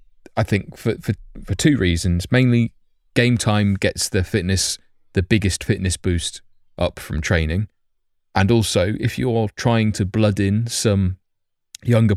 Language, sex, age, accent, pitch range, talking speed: English, male, 20-39, British, 85-100 Hz, 150 wpm